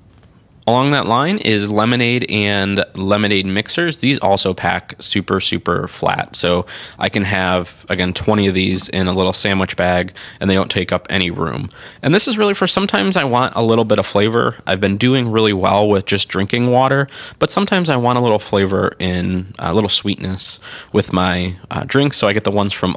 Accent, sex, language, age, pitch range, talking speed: American, male, English, 20-39, 95-115 Hz, 200 wpm